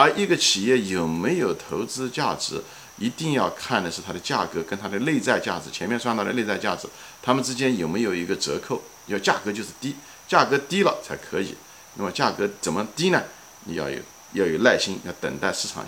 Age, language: 50-69, Chinese